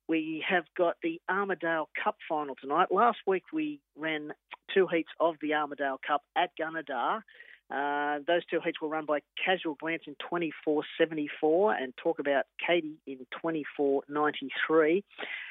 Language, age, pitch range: English, 40-59, 145-170 Hz